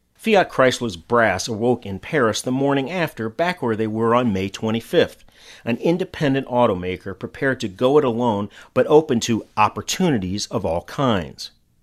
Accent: American